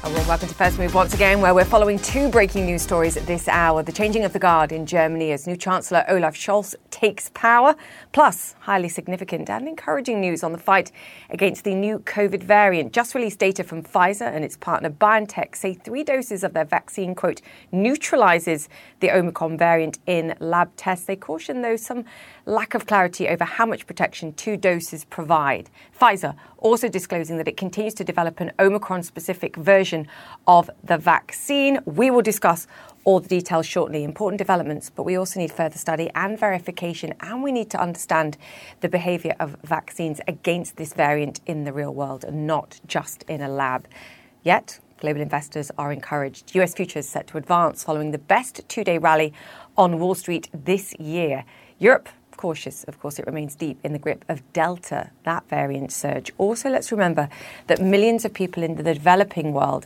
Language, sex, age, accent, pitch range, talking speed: English, female, 30-49, British, 160-200 Hz, 180 wpm